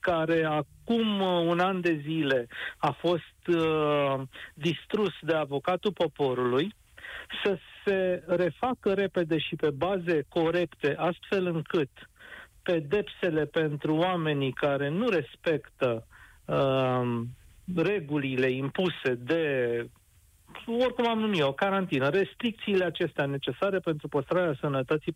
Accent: native